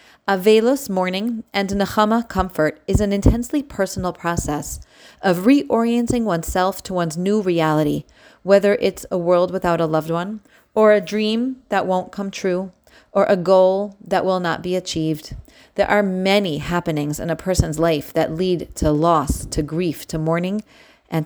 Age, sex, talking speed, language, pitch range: 30-49, female, 160 wpm, English, 165-205 Hz